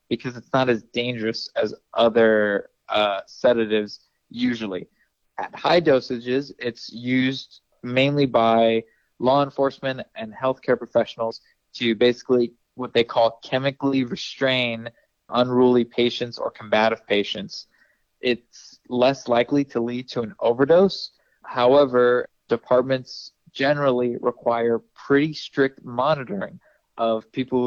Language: English